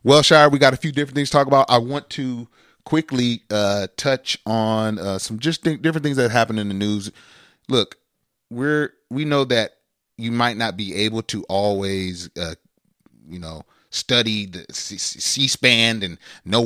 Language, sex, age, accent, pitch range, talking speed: English, male, 30-49, American, 95-125 Hz, 180 wpm